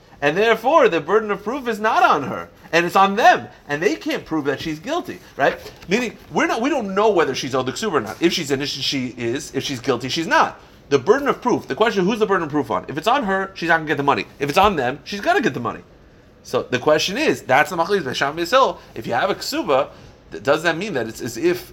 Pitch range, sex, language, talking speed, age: 110-160 Hz, male, English, 260 wpm, 40-59